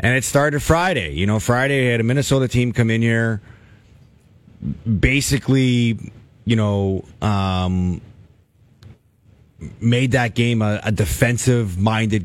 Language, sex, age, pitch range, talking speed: English, male, 30-49, 110-140 Hz, 120 wpm